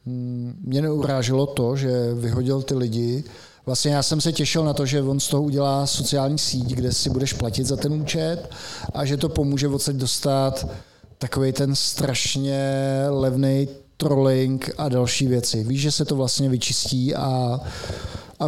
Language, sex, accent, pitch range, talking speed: Czech, male, native, 130-140 Hz, 160 wpm